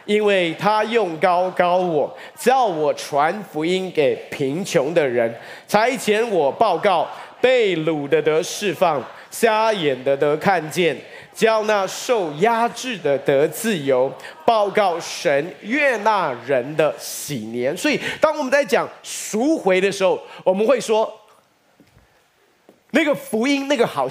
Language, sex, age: Chinese, male, 30-49